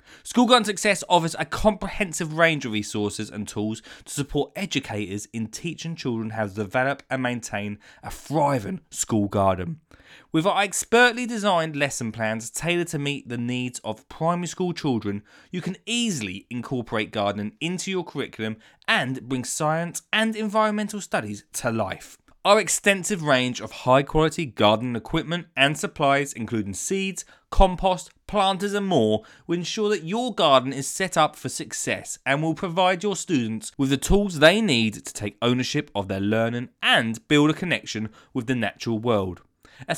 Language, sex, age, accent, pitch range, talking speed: English, male, 20-39, British, 115-175 Hz, 160 wpm